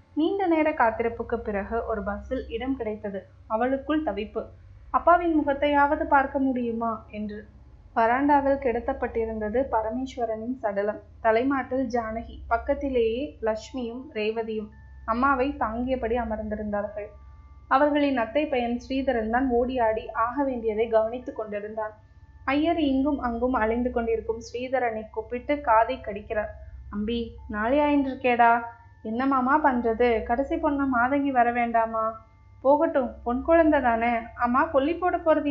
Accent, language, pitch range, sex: native, Tamil, 225-280 Hz, female